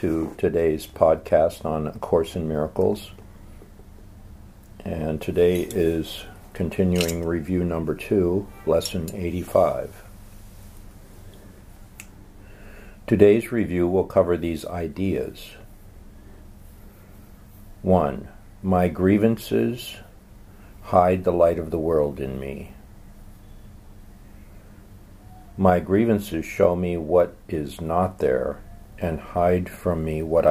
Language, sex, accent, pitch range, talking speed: English, male, American, 85-100 Hz, 90 wpm